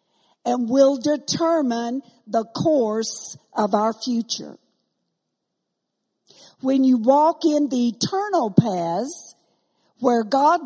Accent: American